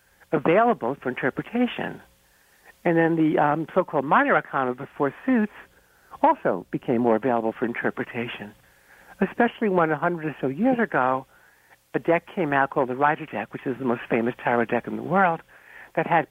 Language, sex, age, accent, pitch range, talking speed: English, male, 60-79, American, 130-190 Hz, 175 wpm